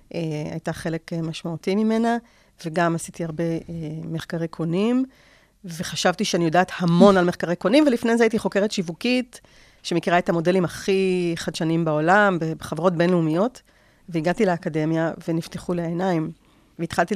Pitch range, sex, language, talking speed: 165-195 Hz, female, Hebrew, 130 wpm